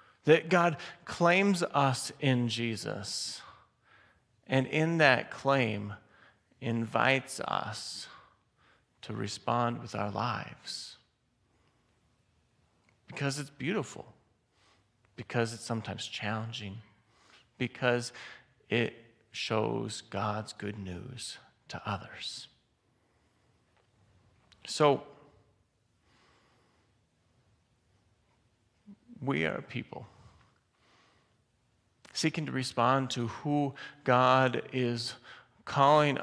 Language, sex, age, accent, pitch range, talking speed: English, male, 40-59, American, 110-145 Hz, 75 wpm